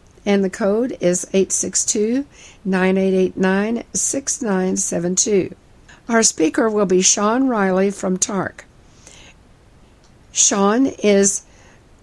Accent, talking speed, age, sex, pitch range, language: American, 85 wpm, 60-79, female, 185-225 Hz, English